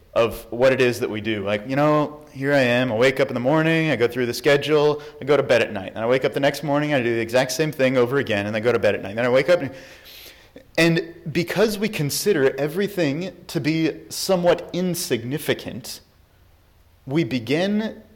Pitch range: 105-155 Hz